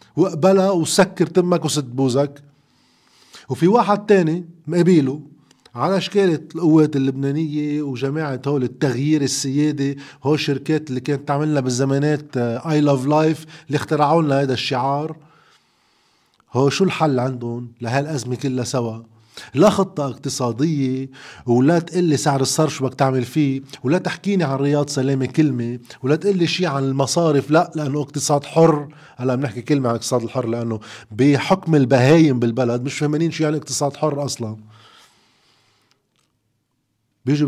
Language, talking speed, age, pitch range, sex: Arabic, 130 wpm, 30-49, 120-155 Hz, male